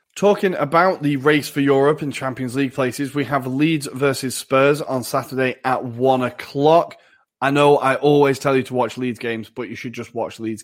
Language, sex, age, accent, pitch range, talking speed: English, male, 20-39, British, 120-145 Hz, 205 wpm